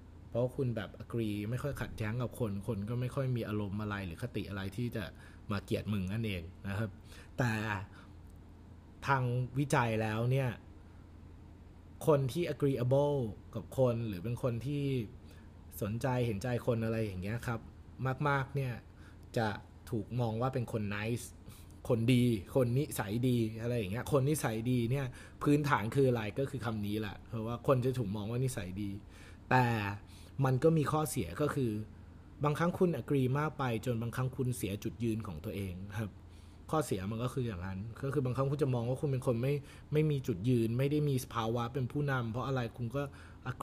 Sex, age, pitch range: male, 20-39, 105-135 Hz